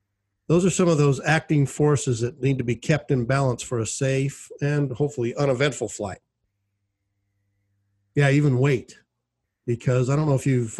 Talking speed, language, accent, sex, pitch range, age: 165 wpm, English, American, male, 110-145 Hz, 50-69